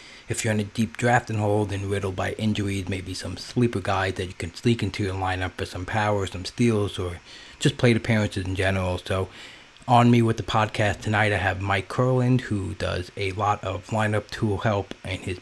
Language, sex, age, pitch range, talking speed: English, male, 30-49, 95-110 Hz, 215 wpm